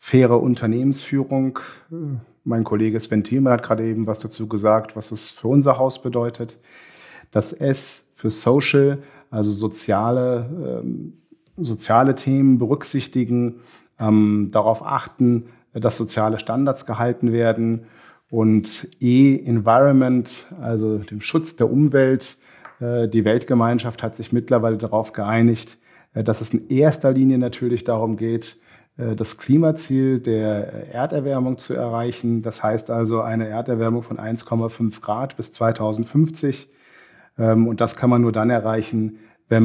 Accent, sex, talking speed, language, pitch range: German, male, 120 wpm, German, 110-130 Hz